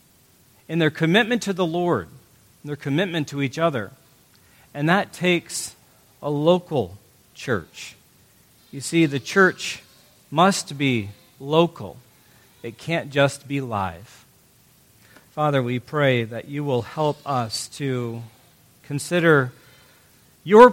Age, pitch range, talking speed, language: 40-59, 125-165 Hz, 120 wpm, English